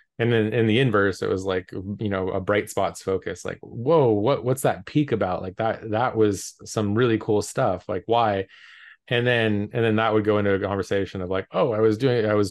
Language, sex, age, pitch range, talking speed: English, male, 20-39, 95-110 Hz, 235 wpm